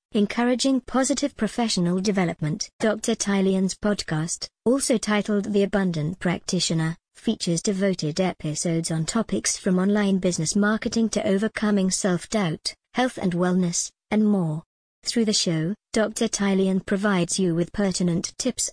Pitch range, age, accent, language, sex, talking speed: 180-215 Hz, 40-59, British, English, male, 125 wpm